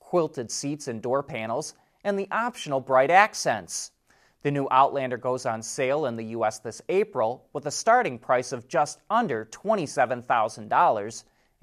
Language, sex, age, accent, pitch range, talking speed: English, male, 30-49, American, 120-165 Hz, 150 wpm